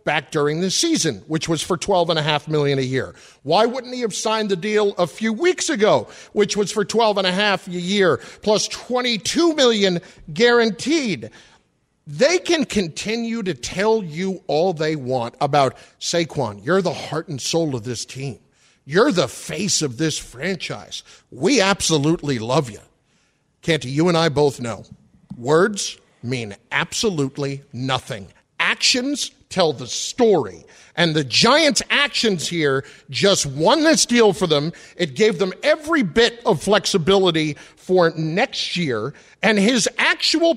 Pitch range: 160-255 Hz